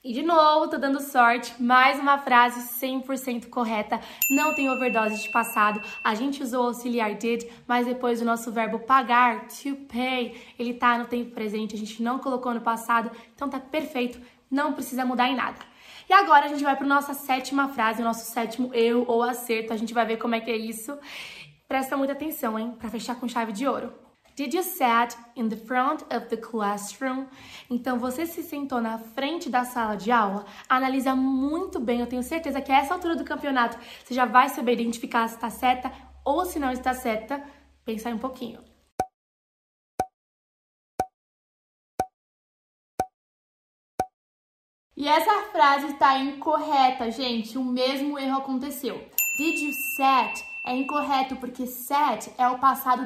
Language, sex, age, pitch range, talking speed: Portuguese, female, 20-39, 235-280 Hz, 170 wpm